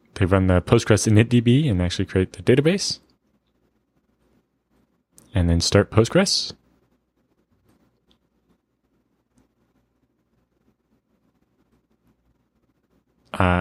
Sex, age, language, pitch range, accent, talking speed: male, 20-39, English, 95-115 Hz, American, 65 wpm